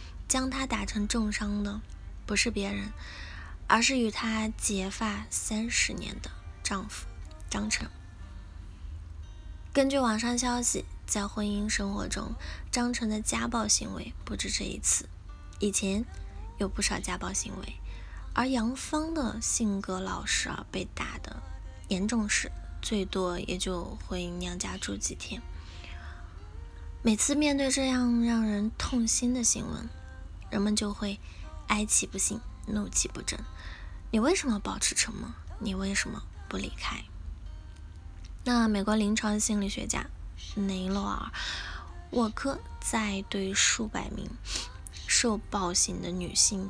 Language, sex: Chinese, female